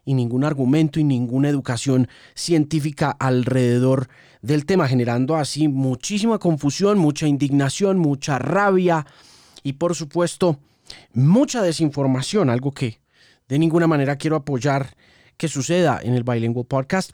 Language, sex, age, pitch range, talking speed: Spanish, male, 30-49, 130-170 Hz, 125 wpm